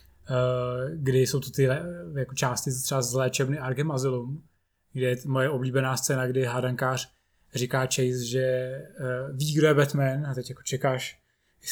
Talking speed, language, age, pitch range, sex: 165 wpm, Czech, 20-39, 130-155 Hz, male